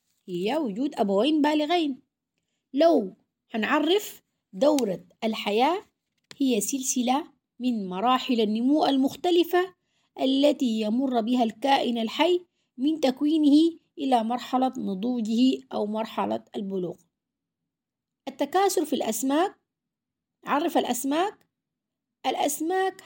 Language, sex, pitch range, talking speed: Arabic, female, 230-320 Hz, 85 wpm